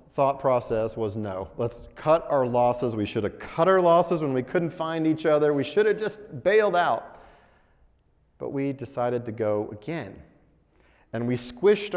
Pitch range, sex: 125-175 Hz, male